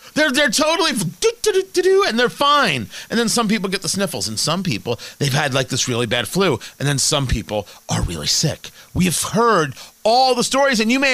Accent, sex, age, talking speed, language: American, male, 40-59, 235 wpm, English